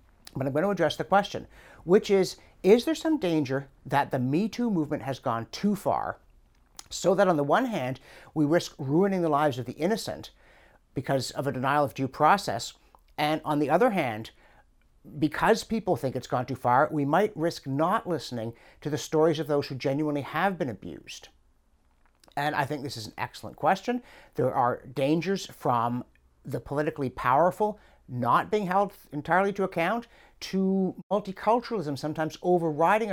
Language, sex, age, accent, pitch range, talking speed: English, male, 60-79, American, 115-175 Hz, 170 wpm